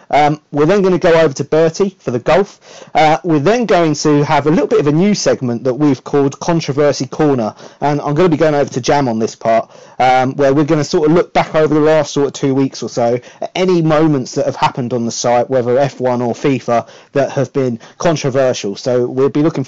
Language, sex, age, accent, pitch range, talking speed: English, male, 30-49, British, 130-160 Hz, 245 wpm